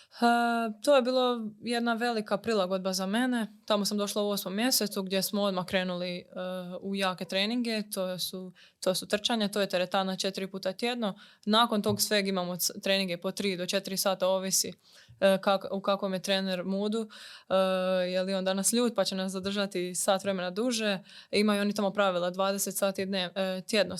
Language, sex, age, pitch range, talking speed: Croatian, female, 20-39, 190-210 Hz, 185 wpm